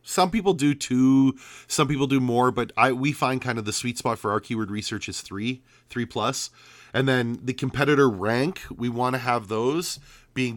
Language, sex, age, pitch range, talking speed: English, male, 30-49, 105-130 Hz, 200 wpm